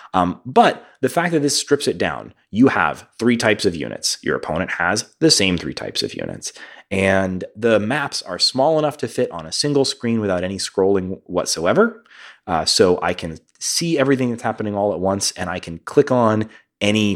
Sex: male